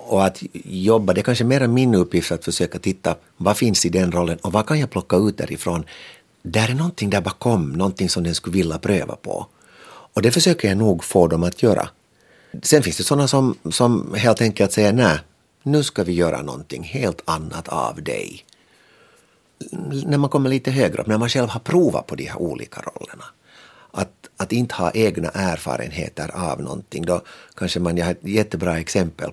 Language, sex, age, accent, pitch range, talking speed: Finnish, male, 50-69, native, 85-110 Hz, 195 wpm